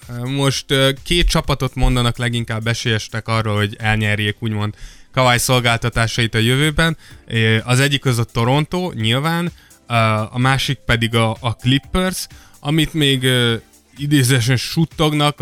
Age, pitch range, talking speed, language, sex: 20-39, 115-135 Hz, 115 wpm, Hungarian, male